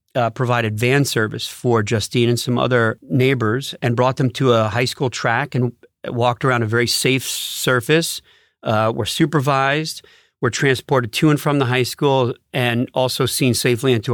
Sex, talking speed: male, 175 wpm